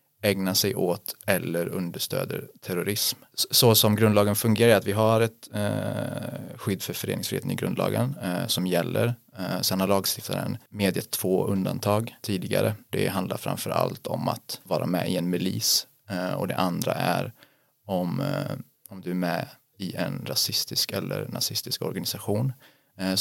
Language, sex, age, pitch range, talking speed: Swedish, male, 30-49, 95-115 Hz, 155 wpm